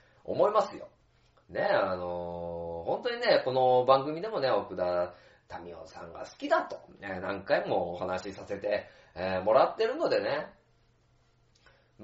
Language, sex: Japanese, male